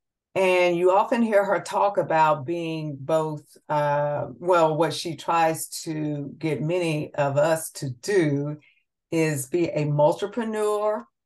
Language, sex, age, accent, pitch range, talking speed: English, female, 50-69, American, 150-175 Hz, 135 wpm